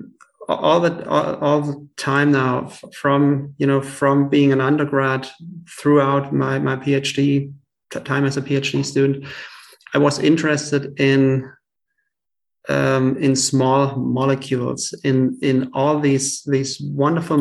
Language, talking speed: English, 125 wpm